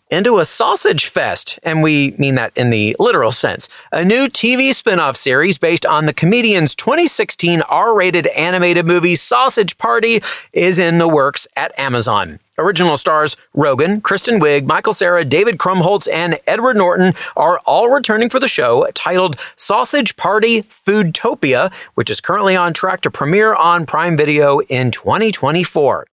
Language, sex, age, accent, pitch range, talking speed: English, male, 40-59, American, 150-205 Hz, 155 wpm